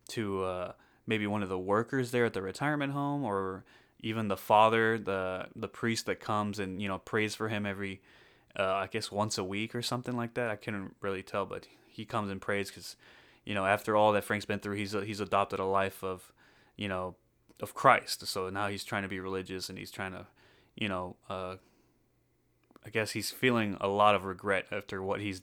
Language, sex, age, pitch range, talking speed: English, male, 20-39, 95-110 Hz, 215 wpm